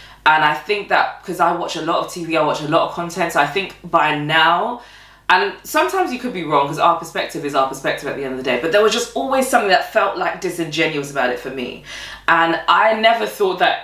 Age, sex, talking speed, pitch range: 20-39, female, 255 wpm, 145-195 Hz